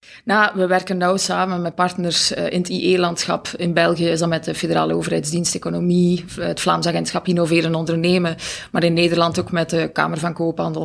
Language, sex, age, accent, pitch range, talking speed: Dutch, female, 20-39, Dutch, 170-185 Hz, 185 wpm